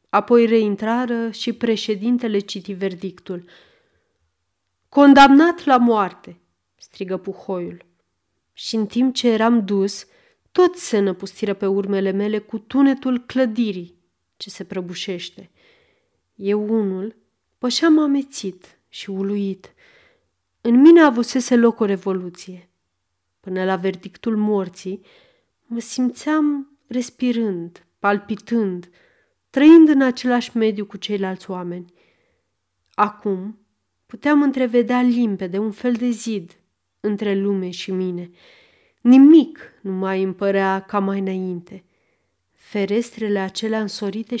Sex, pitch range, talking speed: female, 190-245 Hz, 105 wpm